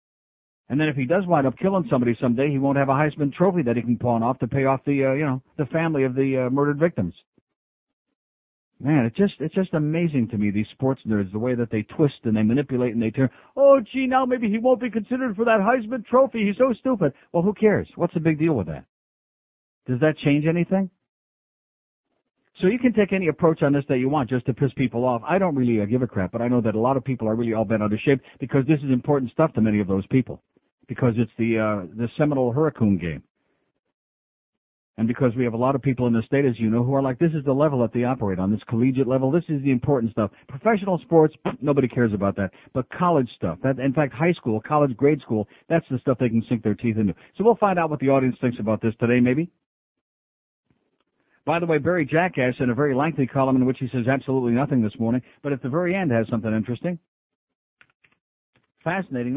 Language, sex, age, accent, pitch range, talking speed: English, male, 60-79, American, 120-160 Hz, 240 wpm